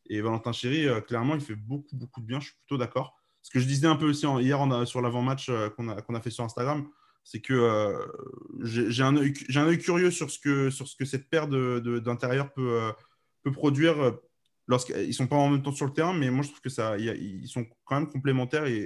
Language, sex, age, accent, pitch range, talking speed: French, male, 20-39, French, 120-150 Hz, 255 wpm